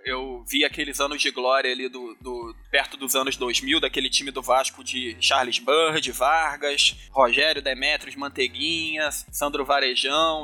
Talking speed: 155 wpm